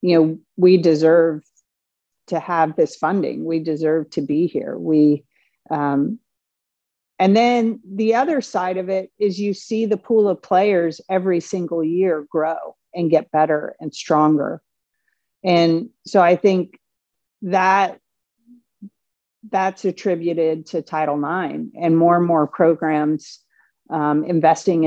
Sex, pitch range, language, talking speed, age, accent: female, 150-185 Hz, English, 135 wpm, 50-69, American